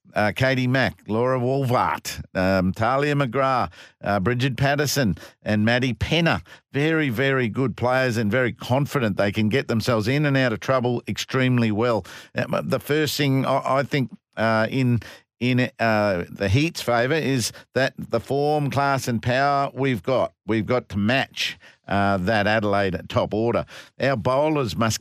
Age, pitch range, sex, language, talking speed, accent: 50-69, 115-140 Hz, male, English, 160 wpm, Australian